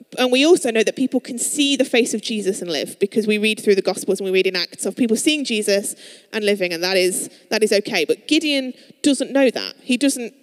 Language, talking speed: English, 255 wpm